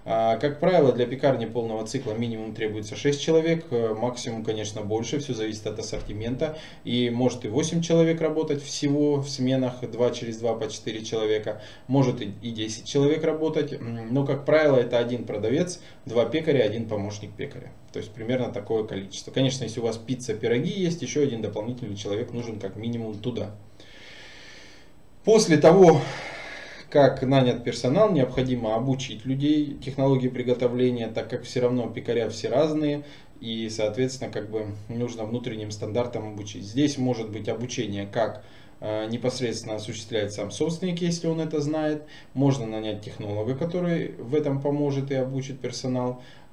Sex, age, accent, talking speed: male, 20-39, native, 150 wpm